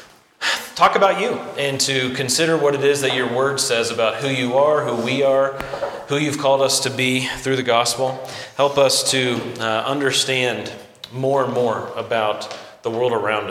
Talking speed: 180 wpm